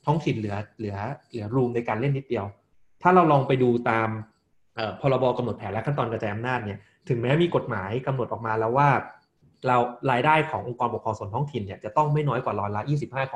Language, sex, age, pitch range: Thai, male, 20-39, 110-135 Hz